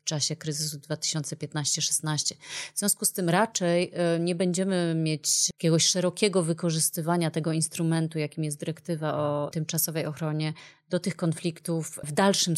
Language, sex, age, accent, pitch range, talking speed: Polish, female, 30-49, native, 155-175 Hz, 135 wpm